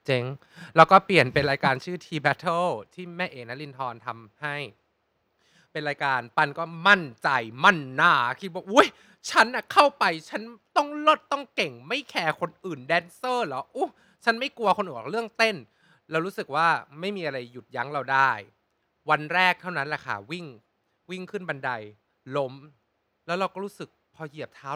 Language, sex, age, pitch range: Thai, male, 20-39, 135-195 Hz